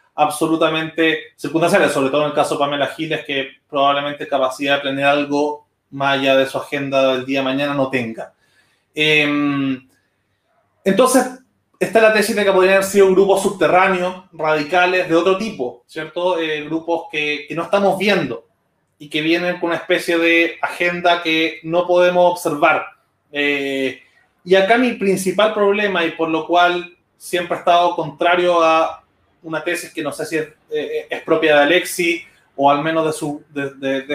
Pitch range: 145-170 Hz